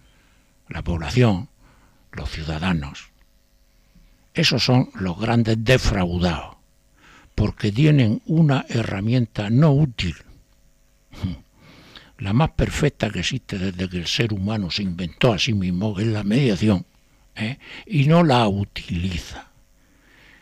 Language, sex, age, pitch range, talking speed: Spanish, male, 60-79, 95-130 Hz, 115 wpm